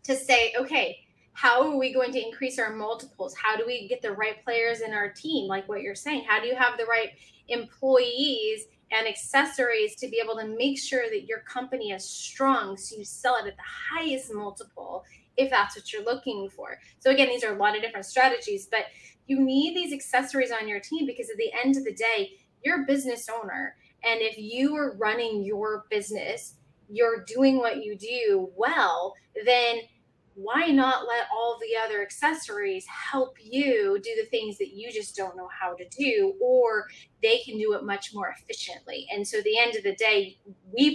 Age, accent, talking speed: 20-39, American, 200 wpm